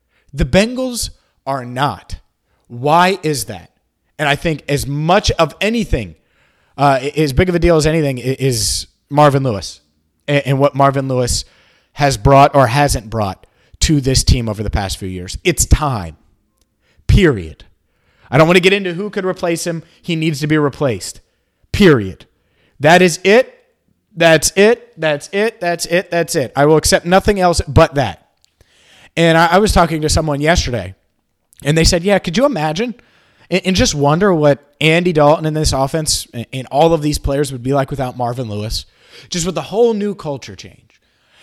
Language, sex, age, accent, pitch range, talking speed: English, male, 30-49, American, 120-175 Hz, 175 wpm